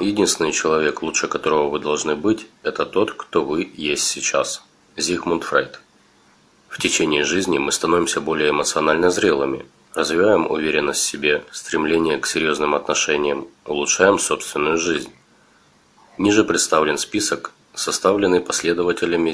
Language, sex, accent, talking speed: Russian, male, native, 120 wpm